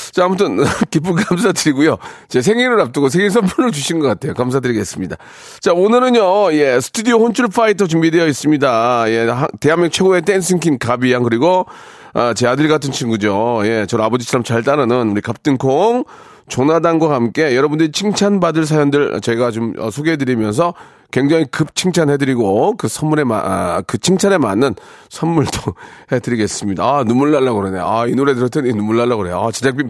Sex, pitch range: male, 120-185 Hz